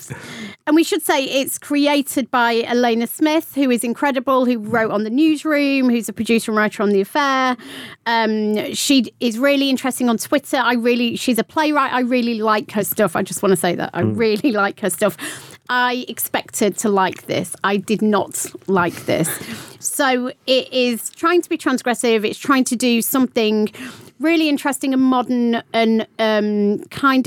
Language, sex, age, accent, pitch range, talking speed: English, female, 40-59, British, 215-265 Hz, 180 wpm